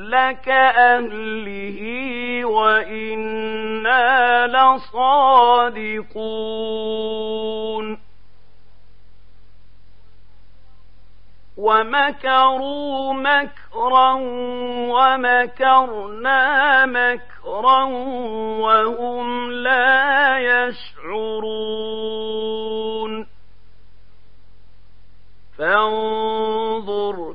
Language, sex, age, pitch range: Arabic, male, 40-59, 220-260 Hz